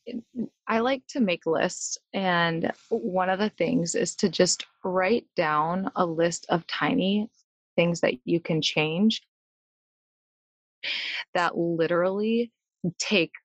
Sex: female